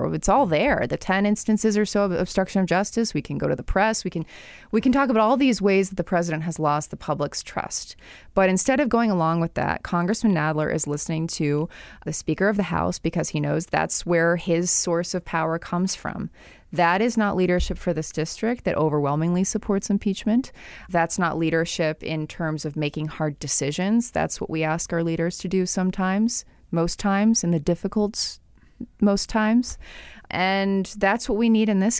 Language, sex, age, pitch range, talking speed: English, female, 20-39, 160-200 Hz, 200 wpm